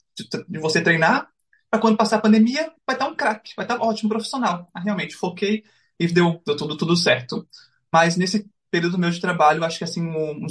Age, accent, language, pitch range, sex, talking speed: 20-39, Brazilian, Portuguese, 170-210 Hz, male, 225 wpm